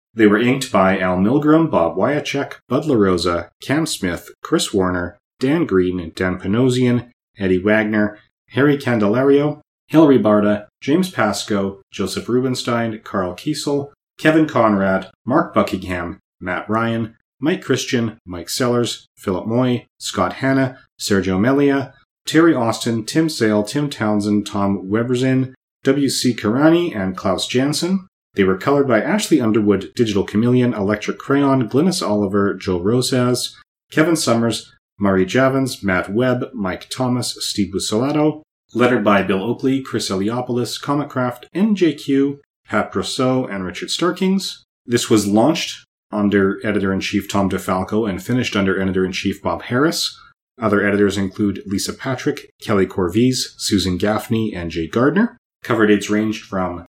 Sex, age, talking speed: male, 30-49, 130 wpm